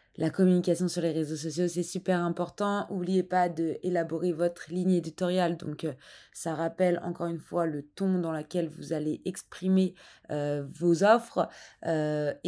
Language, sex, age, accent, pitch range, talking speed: French, female, 20-39, French, 160-185 Hz, 160 wpm